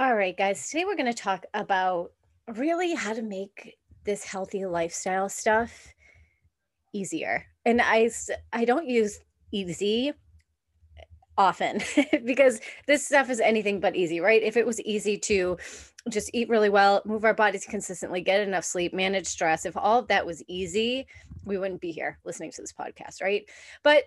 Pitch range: 180-235 Hz